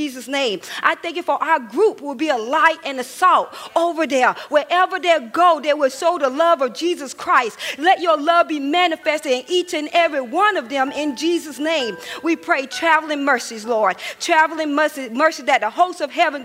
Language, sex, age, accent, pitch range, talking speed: English, female, 40-59, American, 270-335 Hz, 200 wpm